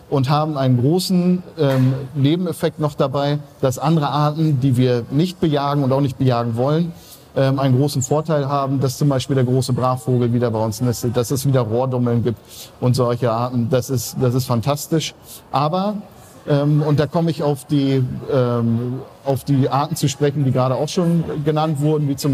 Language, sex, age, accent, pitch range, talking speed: German, male, 50-69, German, 130-155 Hz, 190 wpm